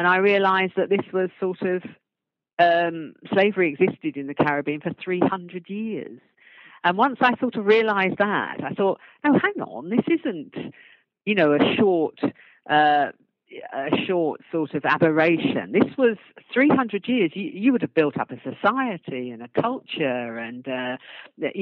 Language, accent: English, British